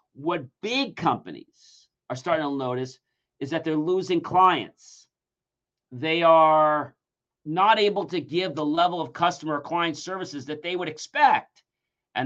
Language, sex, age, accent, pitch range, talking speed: English, male, 50-69, American, 120-165 Hz, 145 wpm